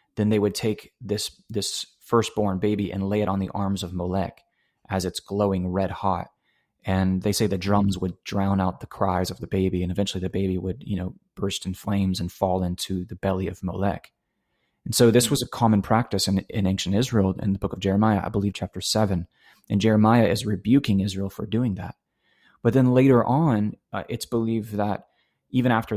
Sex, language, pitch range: male, English, 95-110 Hz